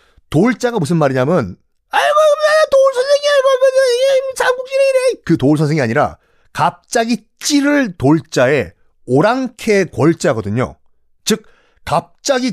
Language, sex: Korean, male